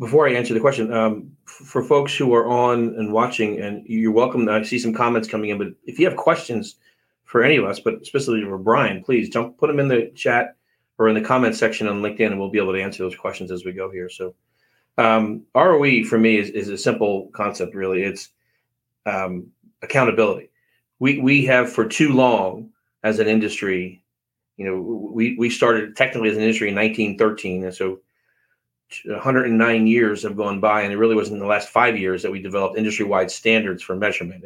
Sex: male